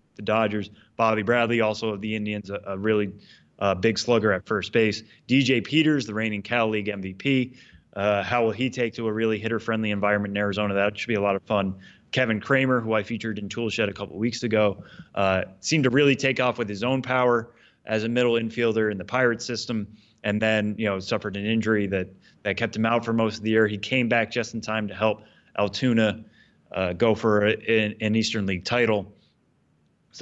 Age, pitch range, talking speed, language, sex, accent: 20-39, 105-120 Hz, 215 wpm, English, male, American